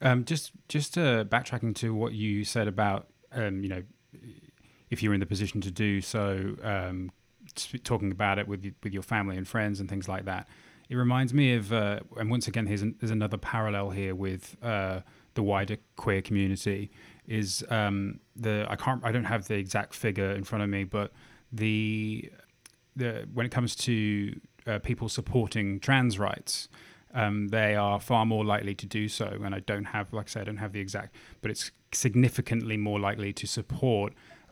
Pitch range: 100-115 Hz